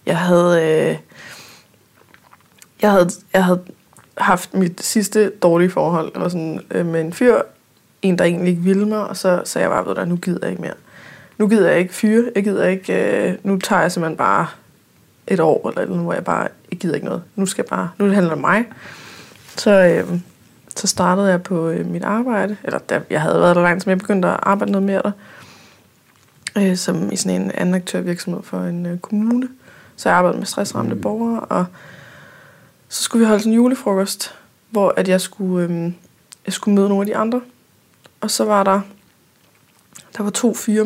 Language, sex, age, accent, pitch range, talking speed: Danish, female, 20-39, native, 175-210 Hz, 200 wpm